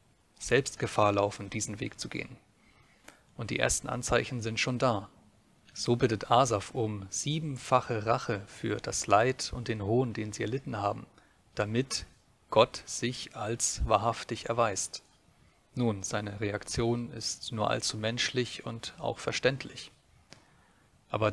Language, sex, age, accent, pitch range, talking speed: German, male, 30-49, German, 110-130 Hz, 130 wpm